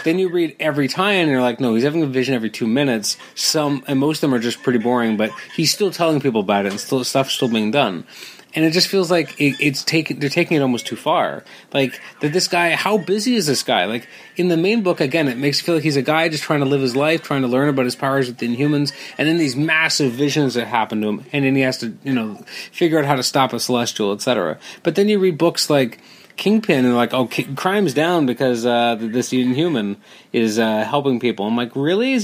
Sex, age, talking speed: male, 30-49, 255 wpm